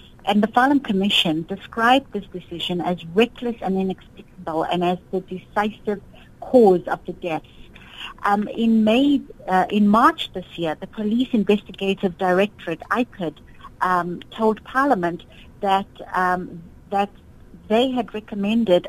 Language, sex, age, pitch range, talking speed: English, female, 50-69, 185-220 Hz, 130 wpm